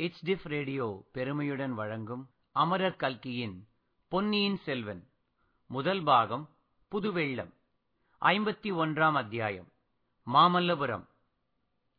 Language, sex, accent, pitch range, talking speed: Tamil, male, native, 130-180 Hz, 70 wpm